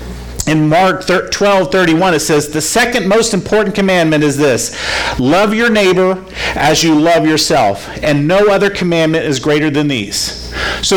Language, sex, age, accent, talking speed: English, male, 50-69, American, 160 wpm